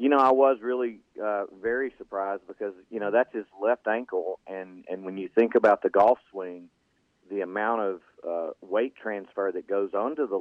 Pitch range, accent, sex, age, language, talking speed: 95-115 Hz, American, male, 40-59, English, 195 wpm